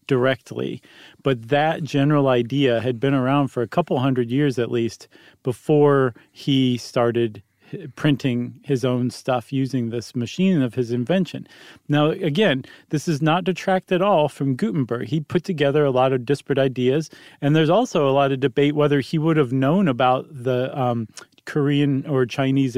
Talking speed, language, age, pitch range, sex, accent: 170 wpm, English, 40-59, 125-160 Hz, male, American